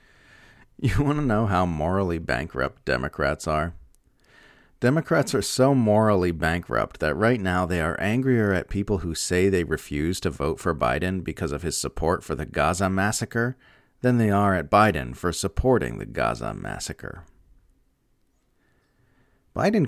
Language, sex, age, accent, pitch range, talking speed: English, male, 40-59, American, 85-120 Hz, 150 wpm